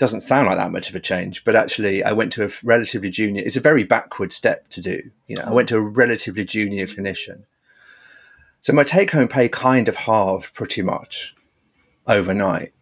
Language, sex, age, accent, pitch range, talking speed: English, male, 30-49, British, 100-145 Hz, 195 wpm